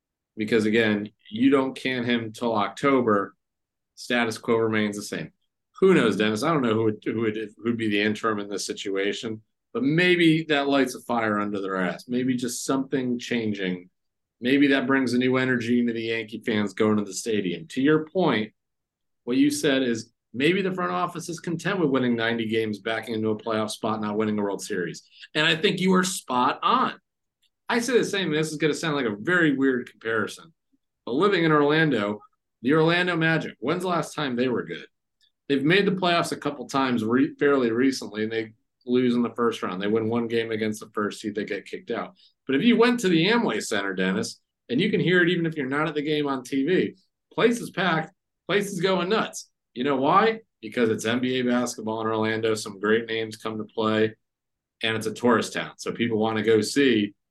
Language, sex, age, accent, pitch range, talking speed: English, male, 40-59, American, 110-155 Hz, 215 wpm